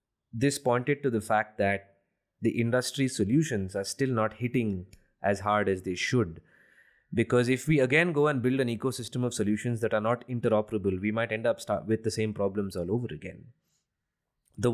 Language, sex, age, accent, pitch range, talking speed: English, male, 20-39, Indian, 105-130 Hz, 185 wpm